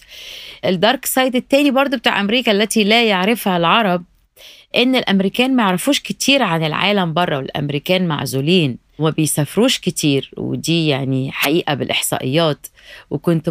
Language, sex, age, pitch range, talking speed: Arabic, female, 20-39, 145-180 Hz, 120 wpm